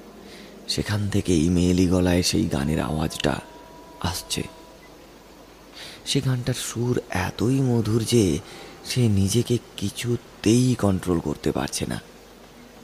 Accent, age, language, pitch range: native, 30-49, Bengali, 85-115 Hz